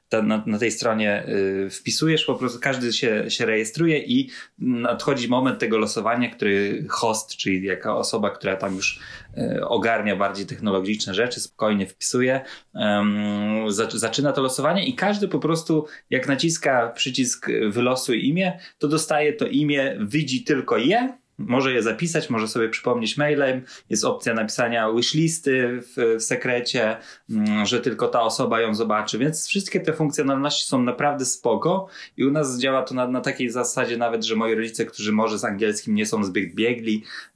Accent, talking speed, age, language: native, 155 wpm, 20-39, Polish